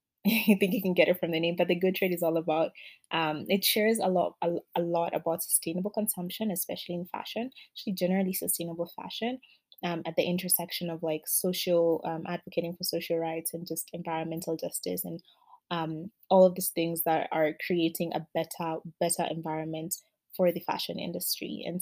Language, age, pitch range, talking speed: English, 20-39, 165-190 Hz, 185 wpm